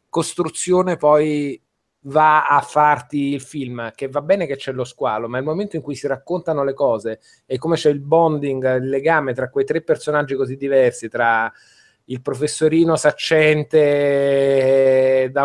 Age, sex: 30-49, male